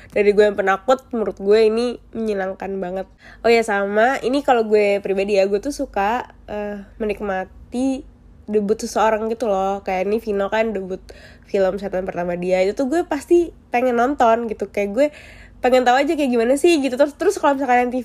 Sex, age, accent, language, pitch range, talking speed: female, 20-39, native, Indonesian, 205-295 Hz, 185 wpm